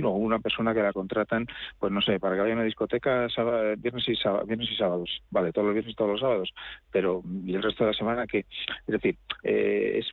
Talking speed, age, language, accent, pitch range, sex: 245 wpm, 40-59, Spanish, Spanish, 95-110 Hz, male